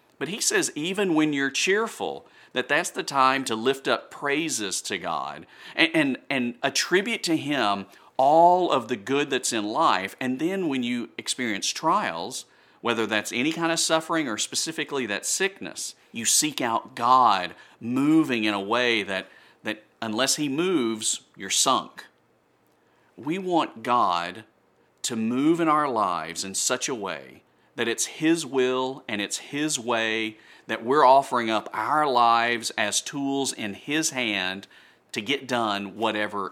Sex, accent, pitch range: male, American, 110-155 Hz